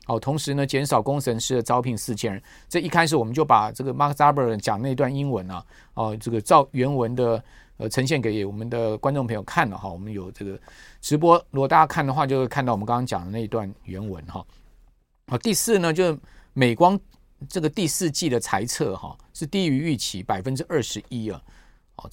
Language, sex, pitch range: Chinese, male, 115-155 Hz